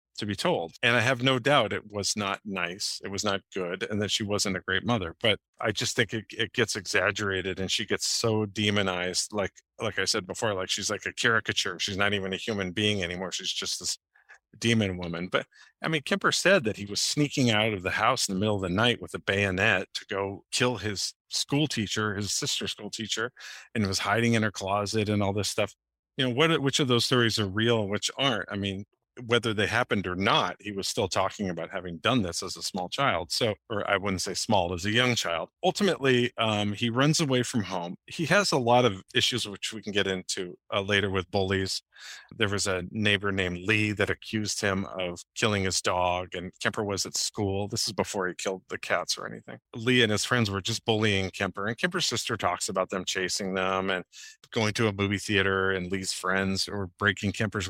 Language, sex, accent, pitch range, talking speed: English, male, American, 95-115 Hz, 225 wpm